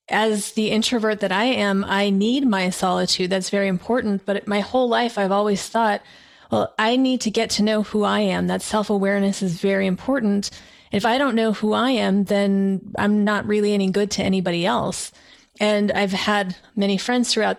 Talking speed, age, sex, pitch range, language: 195 wpm, 30-49, female, 195-220 Hz, English